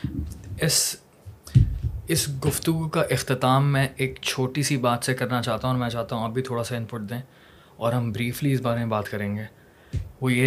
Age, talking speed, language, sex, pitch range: 20-39, 205 wpm, Urdu, male, 115-140 Hz